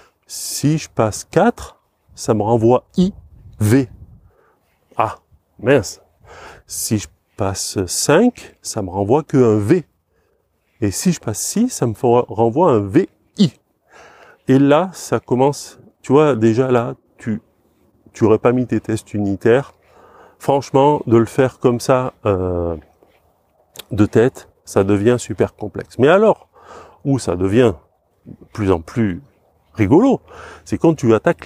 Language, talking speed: French, 140 wpm